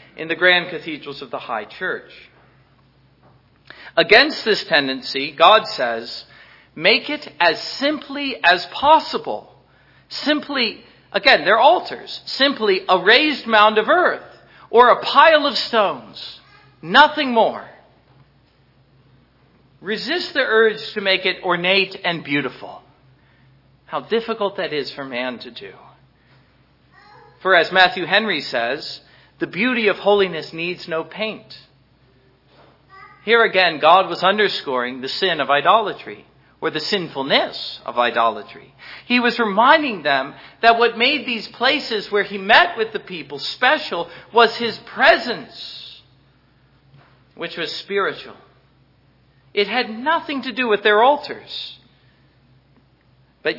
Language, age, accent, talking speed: English, 50-69, American, 125 wpm